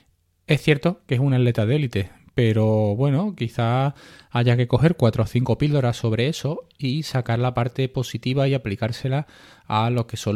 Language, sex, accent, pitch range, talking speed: Spanish, male, Spanish, 110-135 Hz, 180 wpm